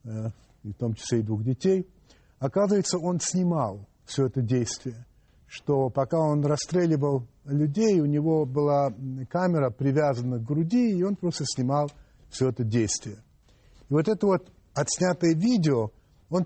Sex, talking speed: male, 140 wpm